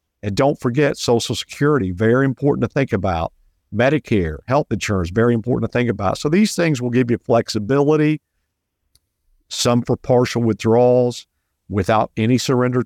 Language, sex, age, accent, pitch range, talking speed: English, male, 50-69, American, 105-130 Hz, 150 wpm